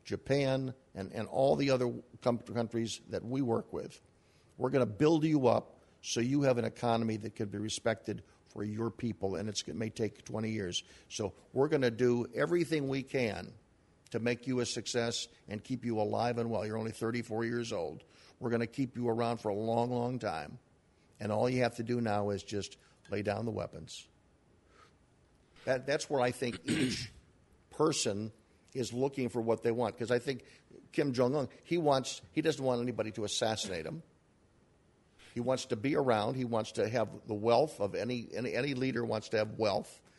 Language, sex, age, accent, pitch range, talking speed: English, male, 50-69, American, 110-125 Hz, 195 wpm